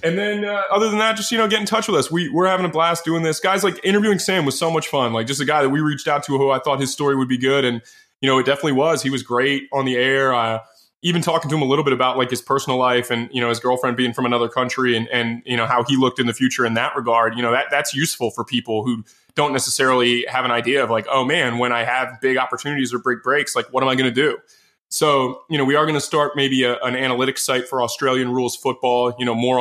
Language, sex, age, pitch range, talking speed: English, male, 20-39, 125-145 Hz, 295 wpm